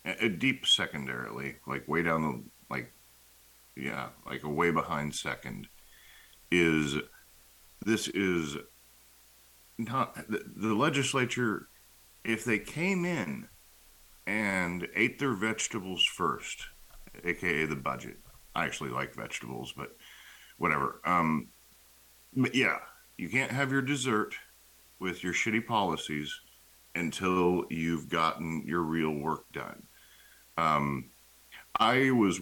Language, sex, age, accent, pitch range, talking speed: English, male, 50-69, American, 65-95 Hz, 110 wpm